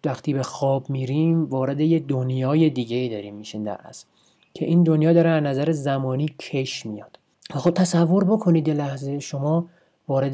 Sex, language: male, Persian